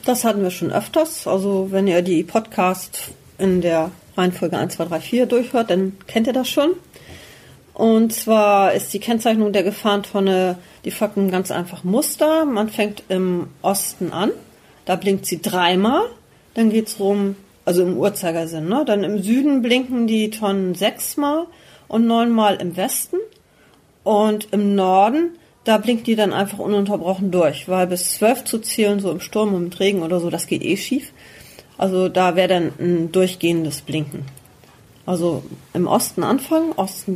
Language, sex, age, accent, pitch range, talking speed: German, female, 40-59, German, 180-230 Hz, 160 wpm